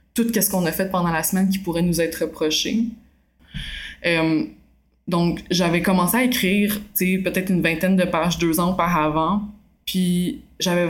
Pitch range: 165-195 Hz